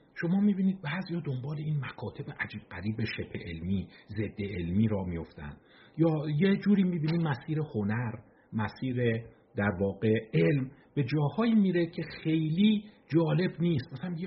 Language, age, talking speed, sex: Persian, 50-69, 145 wpm, male